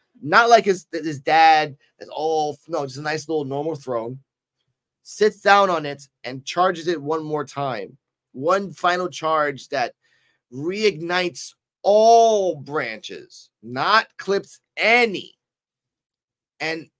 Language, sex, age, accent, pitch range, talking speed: English, male, 30-49, American, 135-180 Hz, 125 wpm